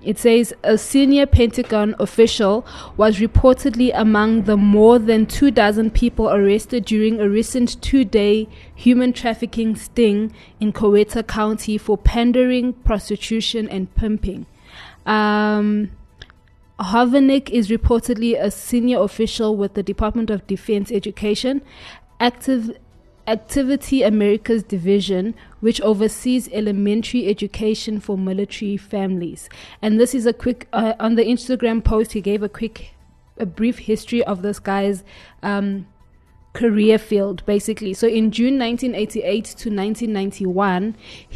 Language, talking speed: English, 125 wpm